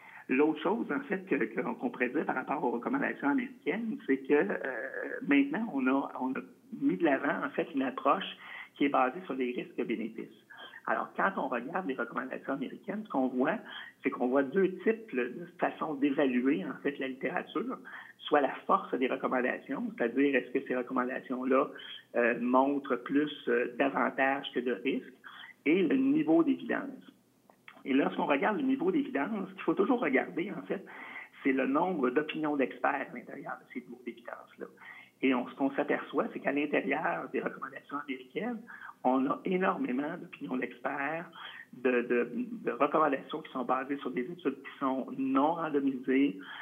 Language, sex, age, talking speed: French, male, 60-79, 170 wpm